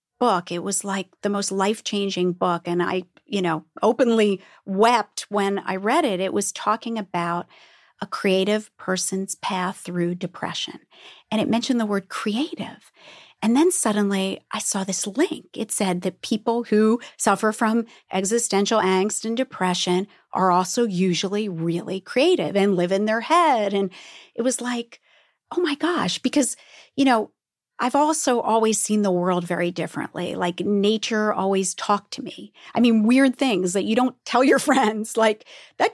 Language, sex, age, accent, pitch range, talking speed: English, female, 40-59, American, 185-225 Hz, 165 wpm